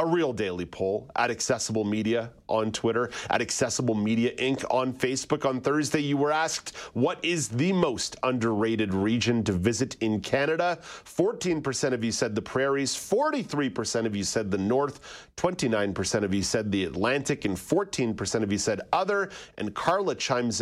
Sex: male